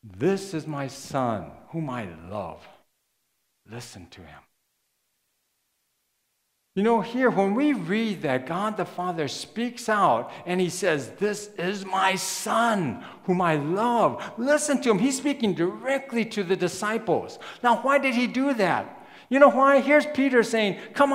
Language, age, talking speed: English, 60-79, 155 wpm